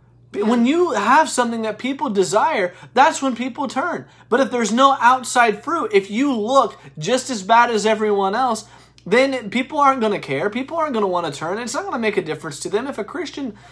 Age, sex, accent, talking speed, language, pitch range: 20-39, male, American, 225 wpm, English, 200-270 Hz